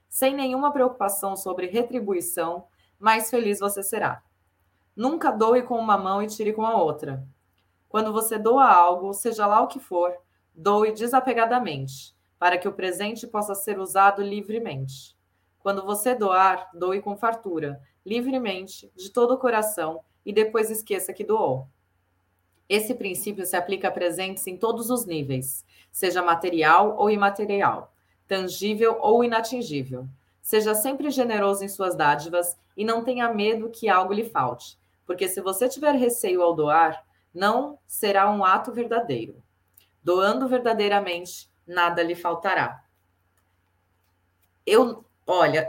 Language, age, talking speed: Portuguese, 20-39, 135 wpm